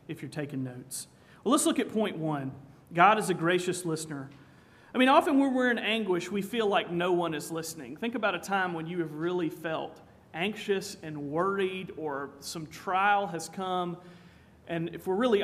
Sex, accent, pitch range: male, American, 160-205 Hz